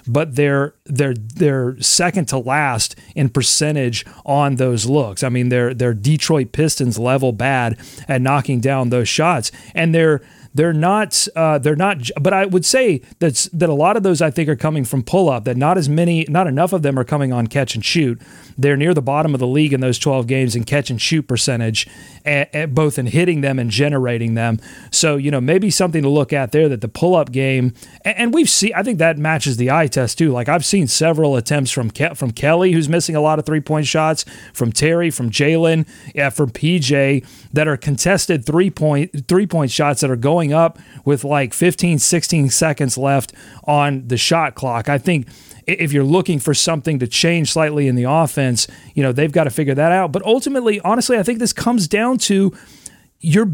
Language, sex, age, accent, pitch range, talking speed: English, male, 40-59, American, 135-170 Hz, 215 wpm